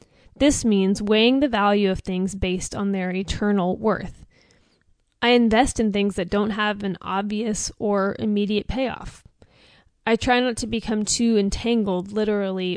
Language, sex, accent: English, female, American